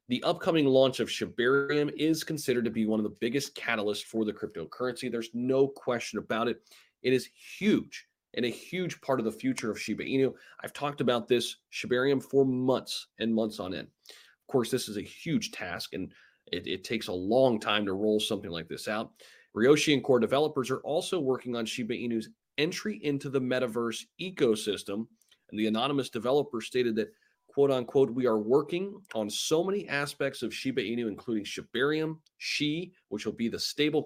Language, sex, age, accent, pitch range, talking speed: English, male, 30-49, American, 115-140 Hz, 190 wpm